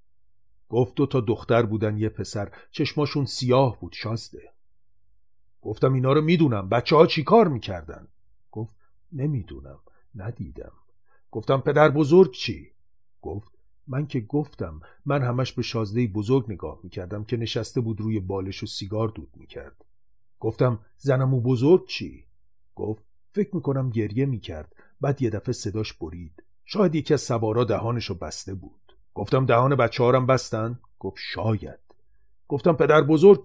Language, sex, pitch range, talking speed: Persian, male, 100-130 Hz, 140 wpm